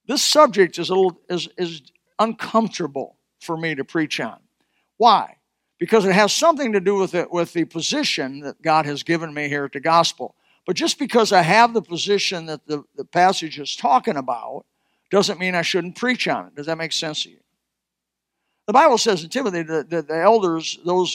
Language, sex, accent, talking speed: English, male, American, 200 wpm